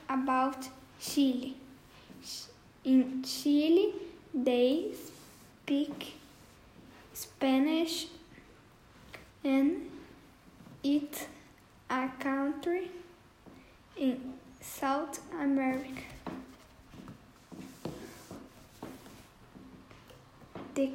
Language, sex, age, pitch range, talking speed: English, female, 10-29, 265-310 Hz, 45 wpm